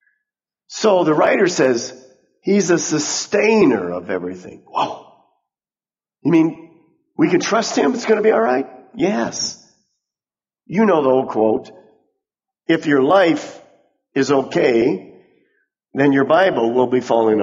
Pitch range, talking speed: 130-210 Hz, 135 wpm